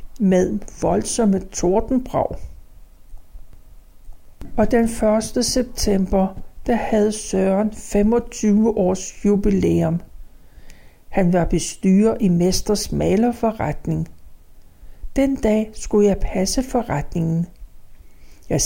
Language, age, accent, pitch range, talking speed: Danish, 60-79, native, 170-230 Hz, 85 wpm